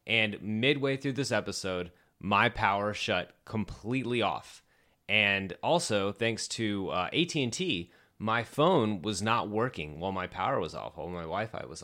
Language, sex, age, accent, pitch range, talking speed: English, male, 30-49, American, 95-120 Hz, 150 wpm